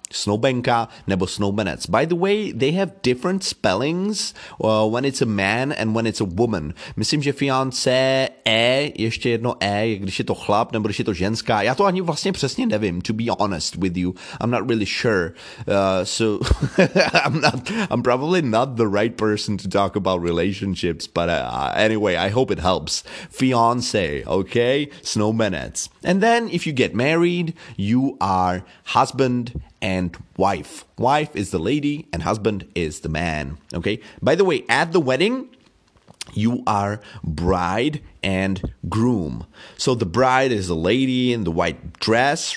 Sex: male